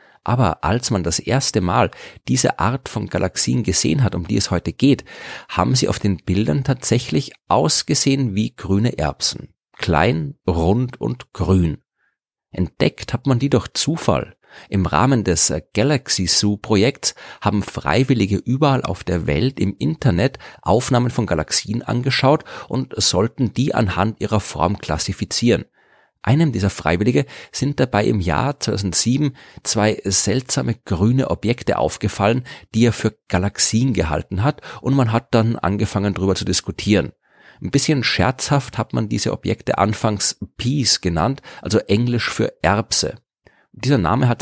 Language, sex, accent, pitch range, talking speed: German, male, German, 95-125 Hz, 145 wpm